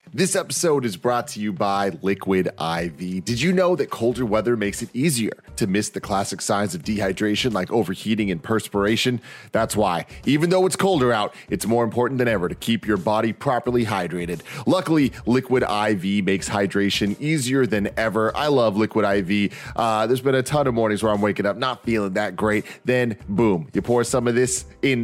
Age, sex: 30-49, male